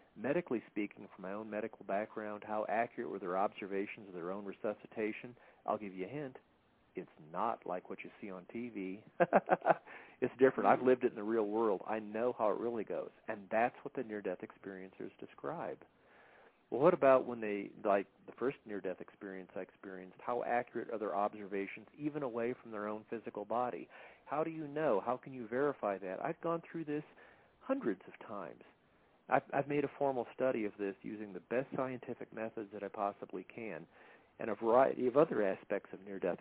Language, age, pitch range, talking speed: English, 40-59, 105-125 Hz, 190 wpm